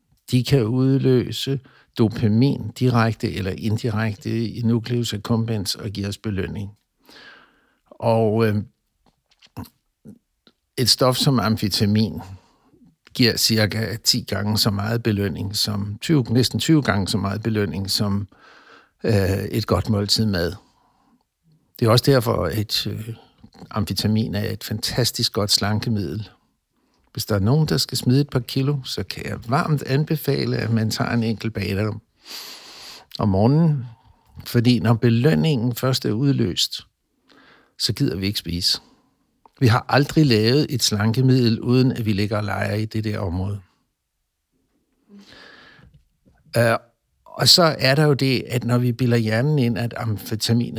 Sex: male